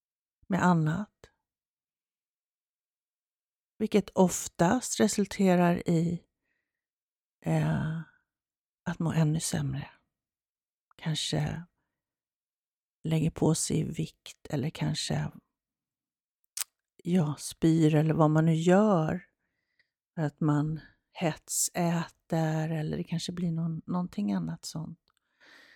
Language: Swedish